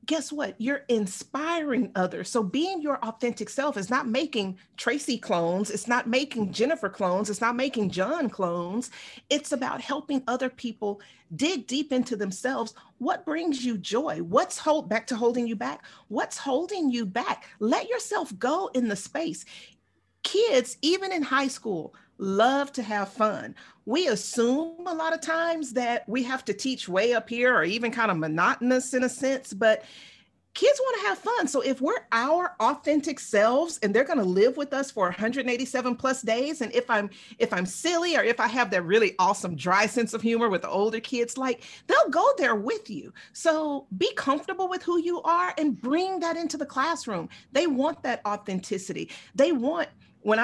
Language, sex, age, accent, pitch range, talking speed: English, female, 40-59, American, 215-290 Hz, 185 wpm